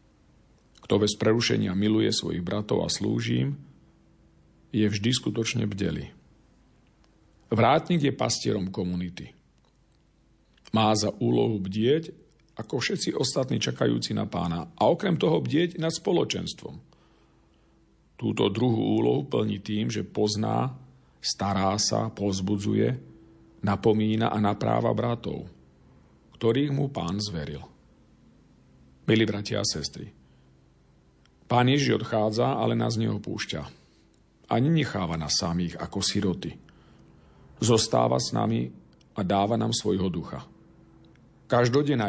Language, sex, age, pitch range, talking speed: Slovak, male, 50-69, 80-120 Hz, 110 wpm